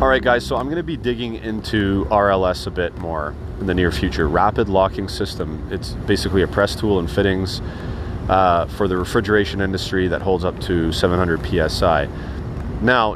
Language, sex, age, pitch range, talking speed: English, male, 30-49, 90-115 Hz, 180 wpm